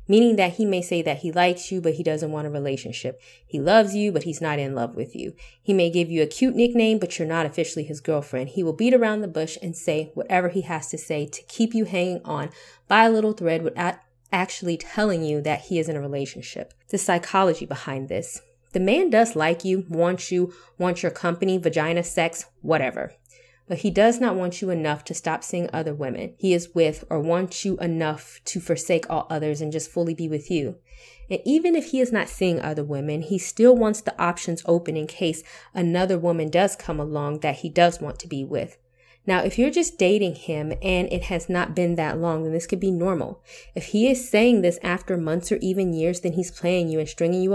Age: 20-39